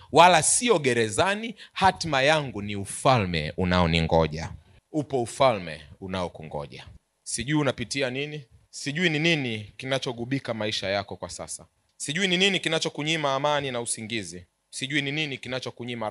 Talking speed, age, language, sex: 125 wpm, 30-49, Swahili, male